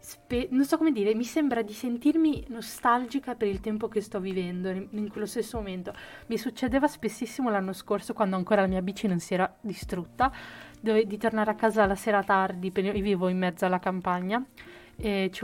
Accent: native